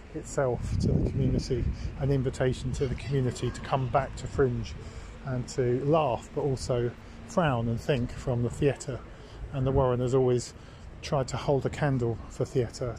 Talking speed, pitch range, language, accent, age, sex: 170 wpm, 120-140 Hz, English, British, 40-59, male